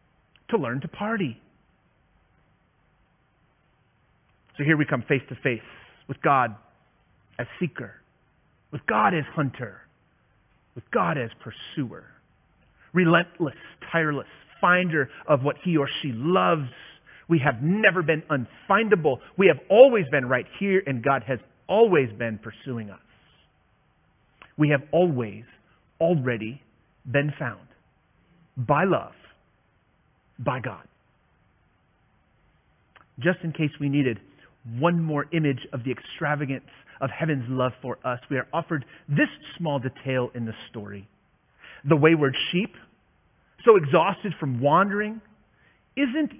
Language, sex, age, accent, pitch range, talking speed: English, male, 30-49, American, 130-175 Hz, 120 wpm